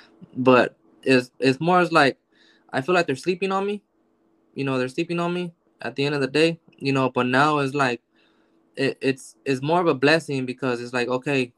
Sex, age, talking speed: male, 20-39, 220 wpm